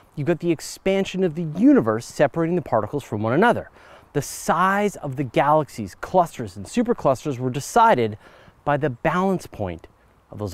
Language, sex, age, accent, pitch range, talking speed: English, male, 30-49, American, 110-160 Hz, 165 wpm